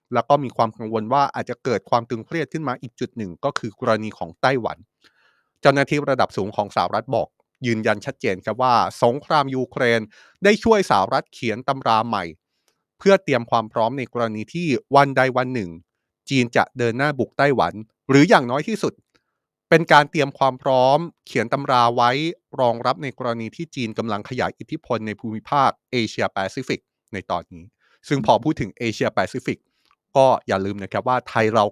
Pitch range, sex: 115-150 Hz, male